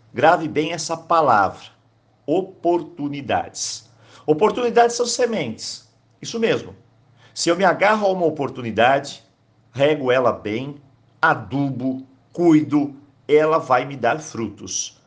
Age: 50-69